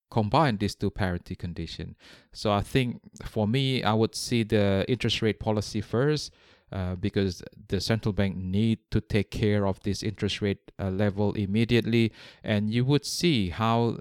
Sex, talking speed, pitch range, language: male, 165 wpm, 100-115 Hz, English